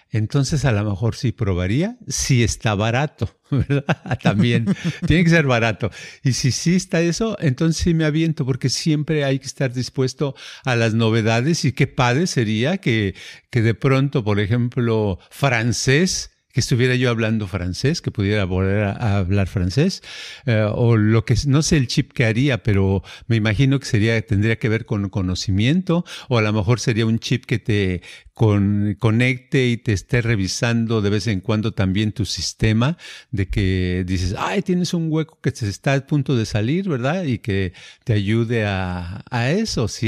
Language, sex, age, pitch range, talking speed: Spanish, male, 50-69, 105-140 Hz, 180 wpm